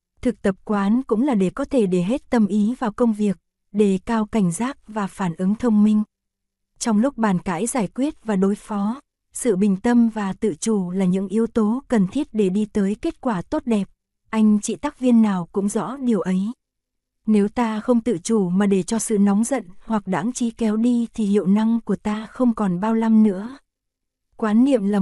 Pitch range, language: 195-230 Hz, Korean